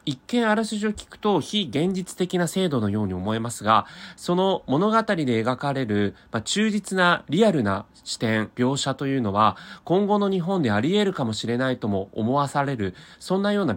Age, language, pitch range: 30-49, Japanese, 110-170 Hz